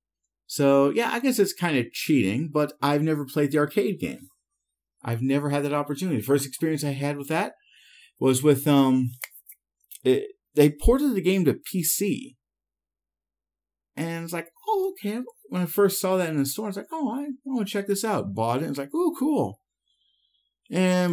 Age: 50-69